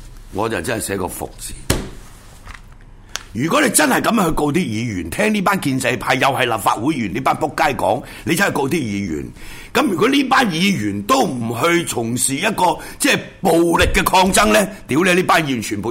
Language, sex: Chinese, male